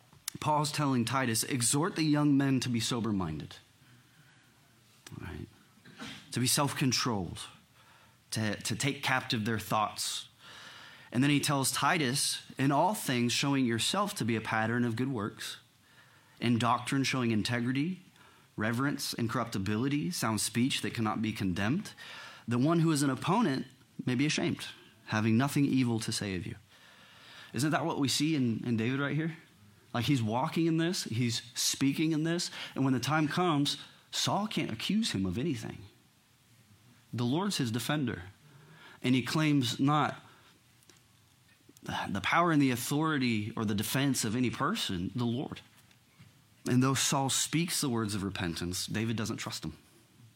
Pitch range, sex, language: 110-140 Hz, male, English